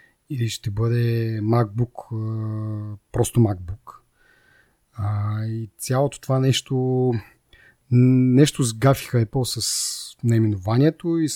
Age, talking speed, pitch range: 30-49, 95 wpm, 110-135 Hz